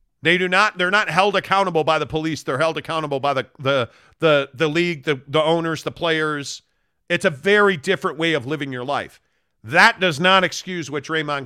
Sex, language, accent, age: male, English, American, 40-59